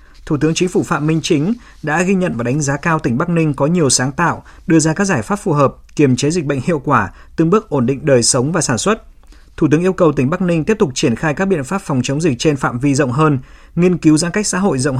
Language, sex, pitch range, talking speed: Vietnamese, male, 125-165 Hz, 290 wpm